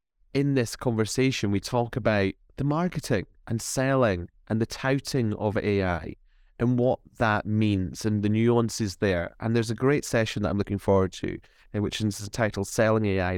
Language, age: English, 30-49